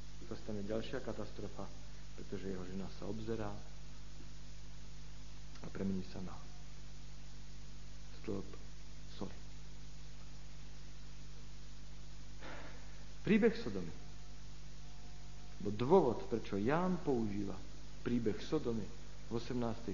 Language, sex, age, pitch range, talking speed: Slovak, male, 50-69, 95-135 Hz, 80 wpm